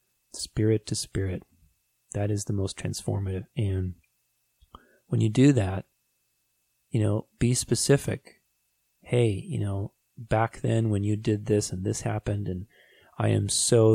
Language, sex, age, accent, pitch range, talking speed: English, male, 30-49, American, 100-125 Hz, 140 wpm